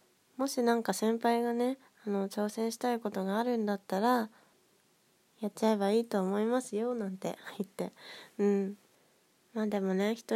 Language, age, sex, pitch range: Japanese, 20-39, female, 195-235 Hz